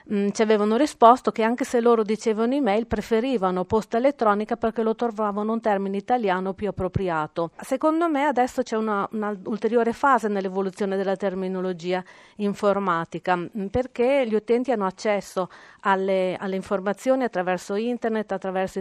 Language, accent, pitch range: Italian, native, 195-230 Hz